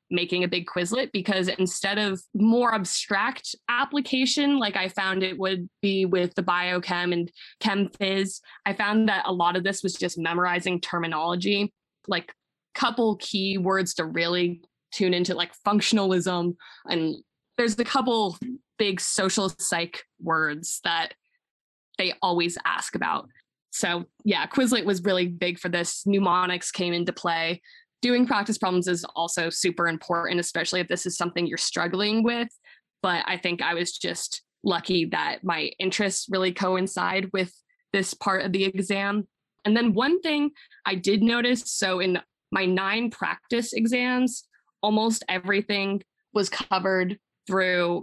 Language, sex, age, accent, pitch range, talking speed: English, female, 20-39, American, 180-215 Hz, 150 wpm